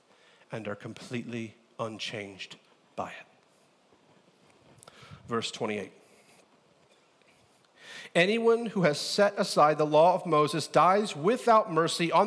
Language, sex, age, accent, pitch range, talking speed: English, male, 40-59, American, 150-210 Hz, 105 wpm